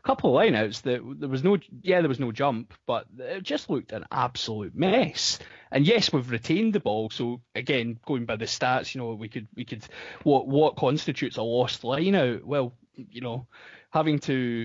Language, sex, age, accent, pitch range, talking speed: English, male, 20-39, British, 115-140 Hz, 200 wpm